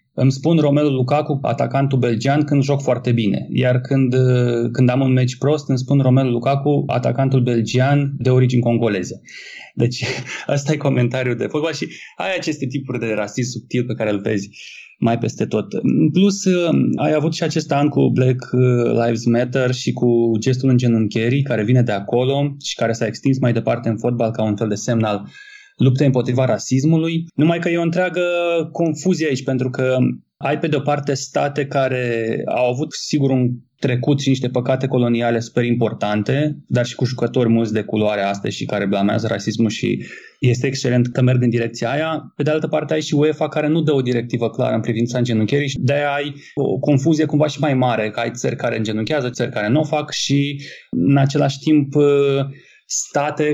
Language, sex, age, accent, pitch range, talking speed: Romanian, male, 20-39, native, 120-145 Hz, 190 wpm